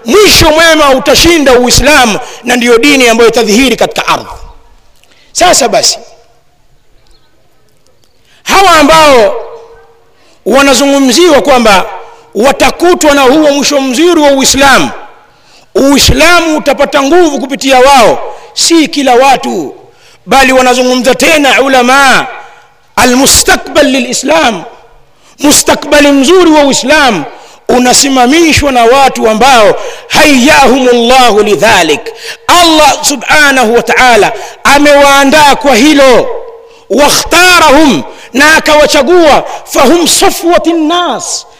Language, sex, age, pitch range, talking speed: Swahili, male, 50-69, 260-335 Hz, 90 wpm